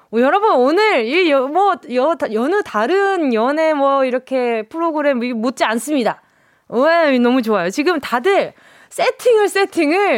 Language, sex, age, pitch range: Korean, female, 20-39, 210-325 Hz